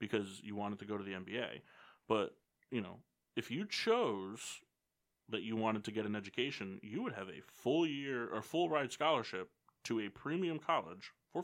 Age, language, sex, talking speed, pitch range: 20-39, English, male, 190 wpm, 105-140 Hz